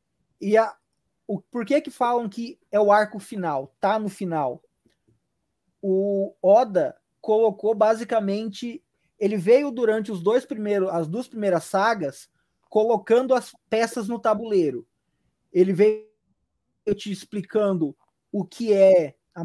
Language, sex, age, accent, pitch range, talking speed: Portuguese, male, 20-39, Brazilian, 195-245 Hz, 130 wpm